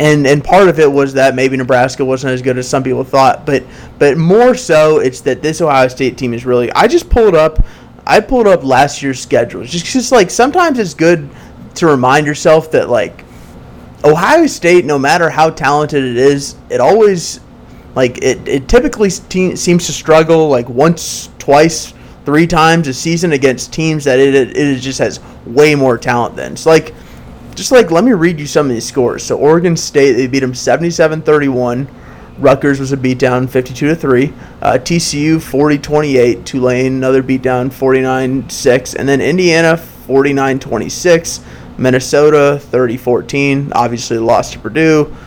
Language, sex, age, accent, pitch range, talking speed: English, male, 20-39, American, 130-160 Hz, 170 wpm